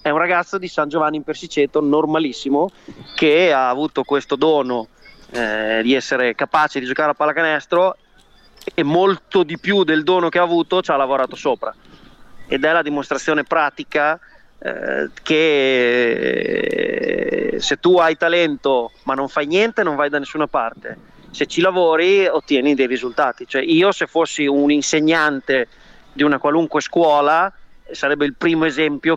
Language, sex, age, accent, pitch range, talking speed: Italian, male, 30-49, native, 140-170 Hz, 155 wpm